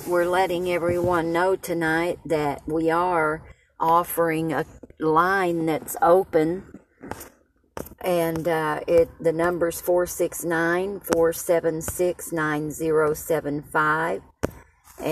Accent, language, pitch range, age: American, English, 150-175 Hz, 50-69